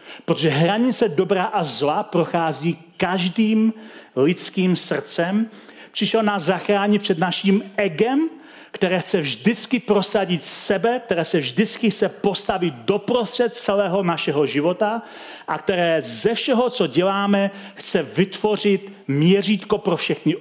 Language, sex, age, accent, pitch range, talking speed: Czech, male, 40-59, native, 170-220 Hz, 115 wpm